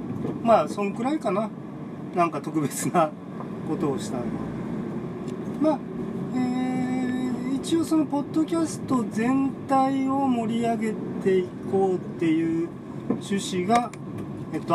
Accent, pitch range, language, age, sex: native, 185-265 Hz, Japanese, 40-59, male